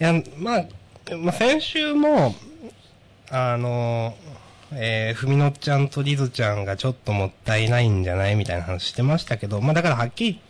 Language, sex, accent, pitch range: Japanese, male, native, 100-140 Hz